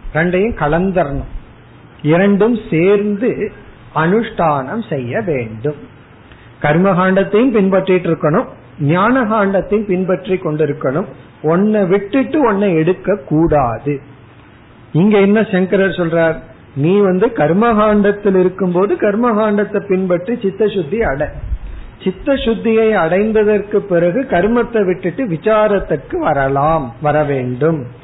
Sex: male